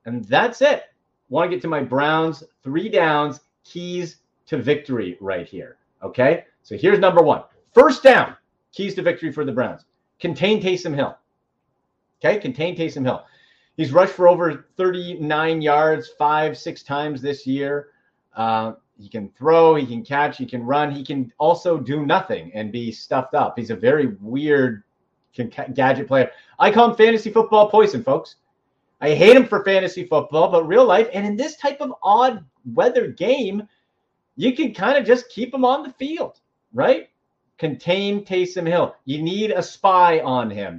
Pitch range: 135-190 Hz